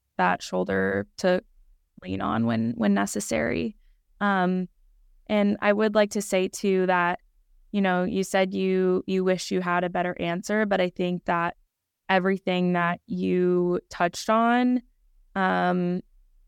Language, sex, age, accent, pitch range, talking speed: English, female, 20-39, American, 175-200 Hz, 140 wpm